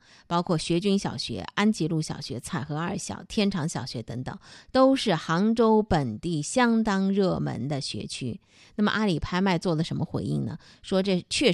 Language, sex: Chinese, female